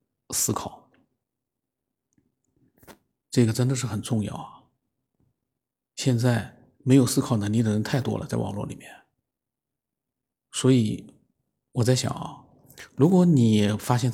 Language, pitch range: Chinese, 105-125 Hz